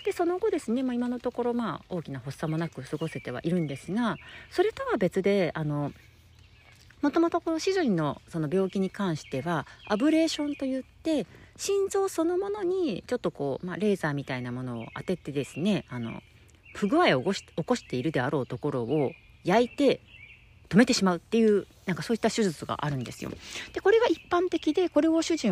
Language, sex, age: Japanese, female, 40-59